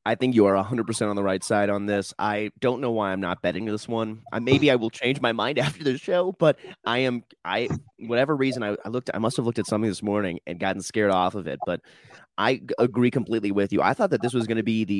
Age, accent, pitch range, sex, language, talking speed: 30-49, American, 100-125 Hz, male, English, 280 wpm